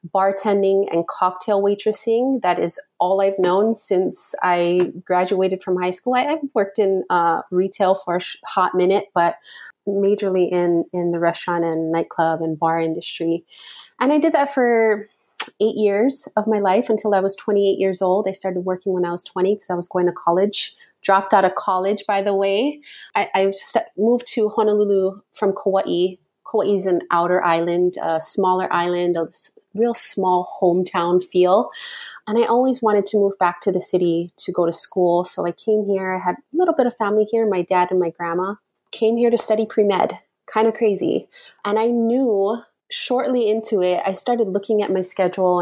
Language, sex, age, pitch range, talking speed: English, female, 30-49, 180-215 Hz, 190 wpm